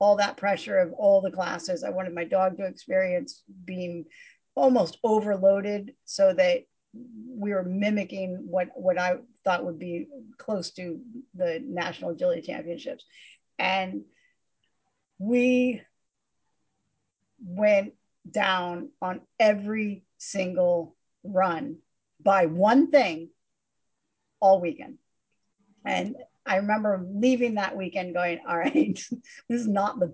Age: 40-59